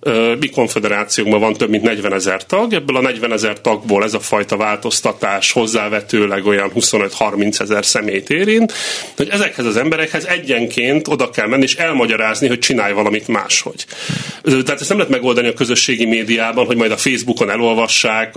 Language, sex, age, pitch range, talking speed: Hungarian, male, 30-49, 105-135 Hz, 165 wpm